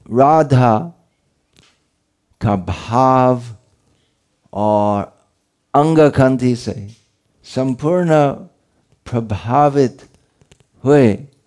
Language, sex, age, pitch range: Hindi, male, 50-69, 110-145 Hz